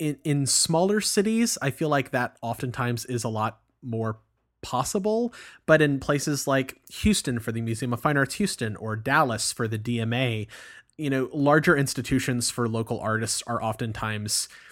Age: 30-49